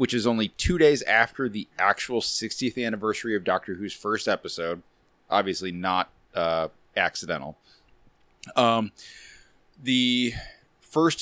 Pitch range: 100-130 Hz